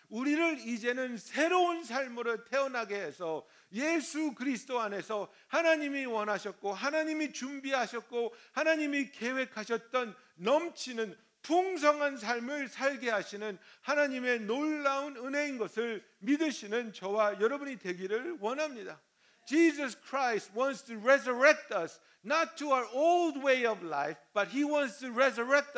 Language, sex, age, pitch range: Korean, male, 50-69, 230-285 Hz